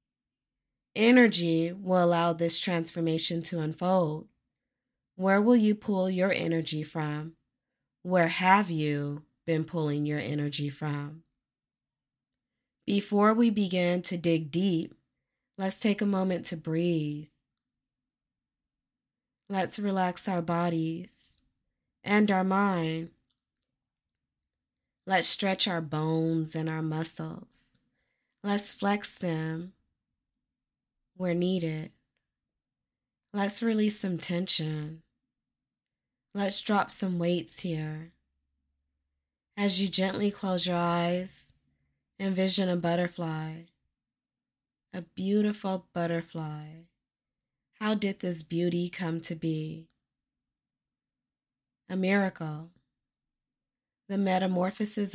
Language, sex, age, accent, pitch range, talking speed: English, female, 20-39, American, 155-190 Hz, 90 wpm